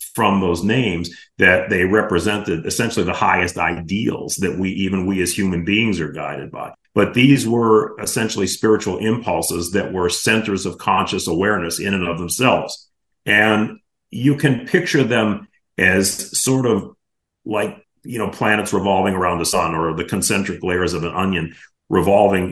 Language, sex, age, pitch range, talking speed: English, male, 50-69, 85-105 Hz, 160 wpm